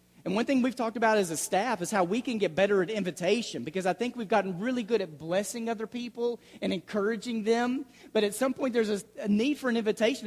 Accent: American